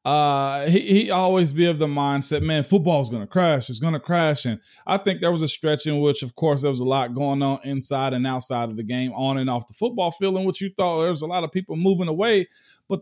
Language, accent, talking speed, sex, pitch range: English, American, 265 wpm, male, 140-185 Hz